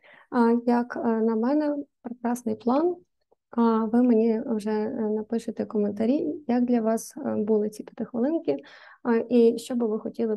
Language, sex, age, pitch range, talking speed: Ukrainian, female, 20-39, 225-255 Hz, 125 wpm